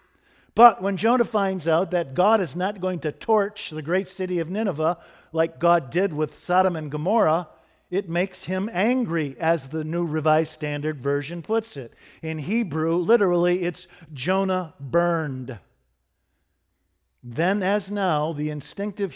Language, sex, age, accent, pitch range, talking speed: English, male, 50-69, American, 155-200 Hz, 145 wpm